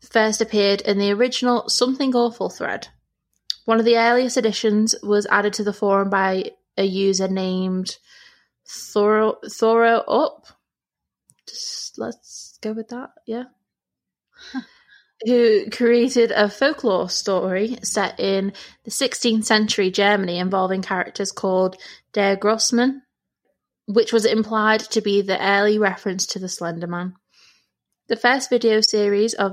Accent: British